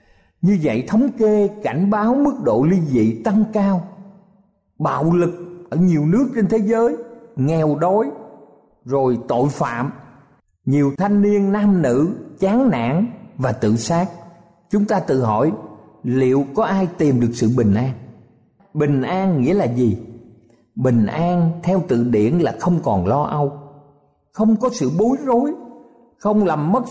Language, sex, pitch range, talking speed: Vietnamese, male, 125-195 Hz, 155 wpm